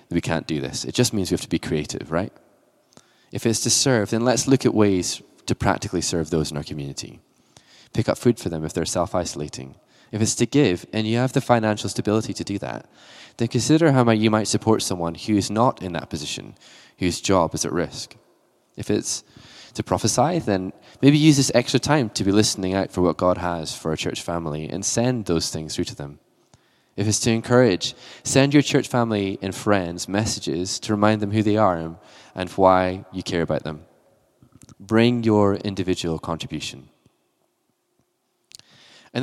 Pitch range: 85-115 Hz